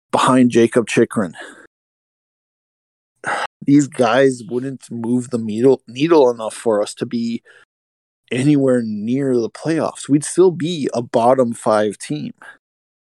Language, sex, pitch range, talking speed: English, male, 115-135 Hz, 120 wpm